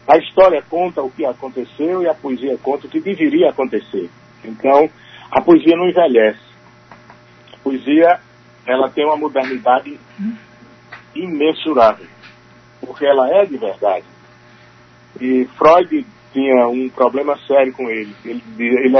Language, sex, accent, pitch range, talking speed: Portuguese, male, Brazilian, 120-170 Hz, 125 wpm